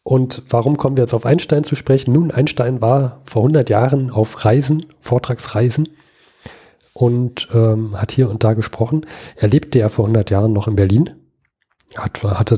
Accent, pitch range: German, 105-130 Hz